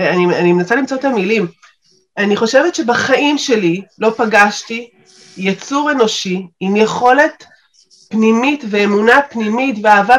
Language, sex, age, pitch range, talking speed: Hebrew, female, 30-49, 195-255 Hz, 120 wpm